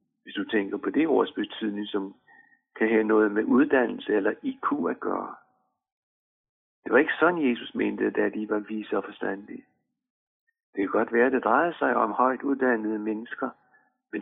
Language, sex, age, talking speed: Danish, male, 60-79, 175 wpm